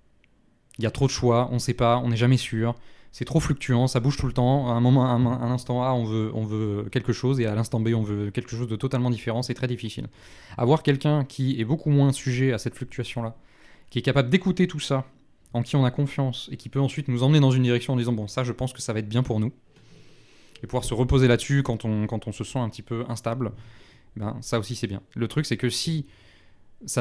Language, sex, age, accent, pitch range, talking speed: French, male, 20-39, French, 110-130 Hz, 265 wpm